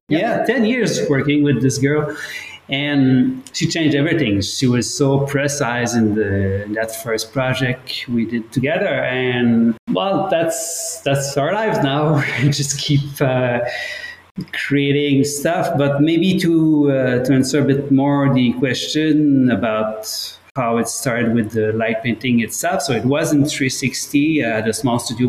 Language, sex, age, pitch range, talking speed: English, male, 30-49, 120-155 Hz, 155 wpm